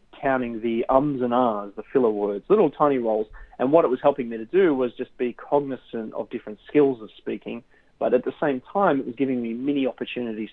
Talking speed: 220 wpm